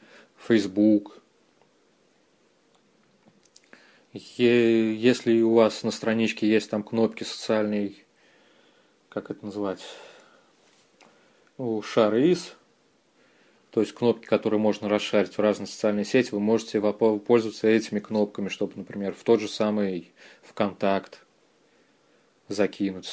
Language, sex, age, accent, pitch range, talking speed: Russian, male, 20-39, native, 100-115 Hz, 105 wpm